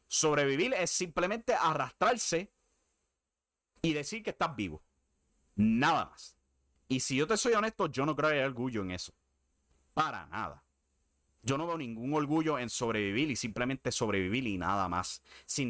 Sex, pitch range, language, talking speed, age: male, 95-150 Hz, English, 150 wpm, 30-49